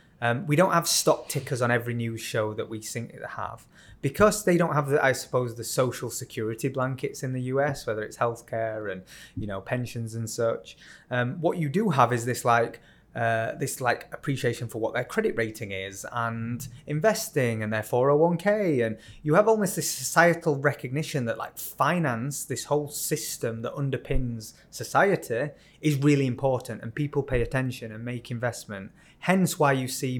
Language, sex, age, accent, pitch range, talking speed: English, male, 20-39, British, 120-150 Hz, 175 wpm